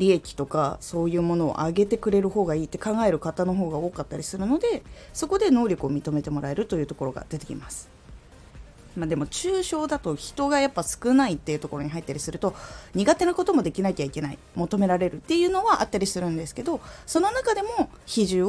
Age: 20-39